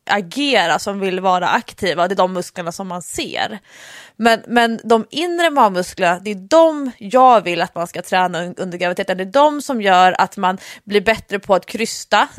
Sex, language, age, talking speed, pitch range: female, English, 20-39, 195 wpm, 190-240 Hz